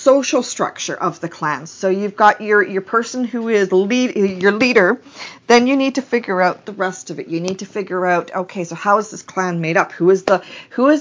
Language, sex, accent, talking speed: English, female, American, 240 wpm